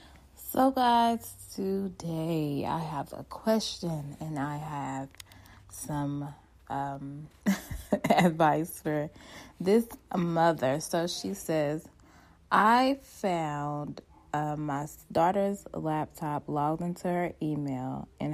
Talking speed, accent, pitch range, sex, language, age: 100 wpm, American, 145-180 Hz, female, English, 20-39